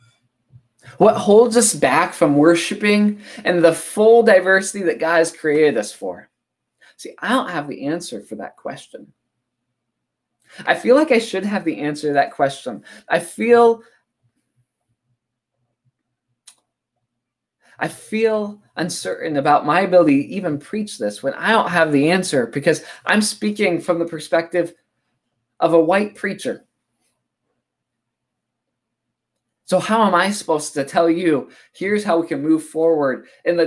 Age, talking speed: 20-39, 145 wpm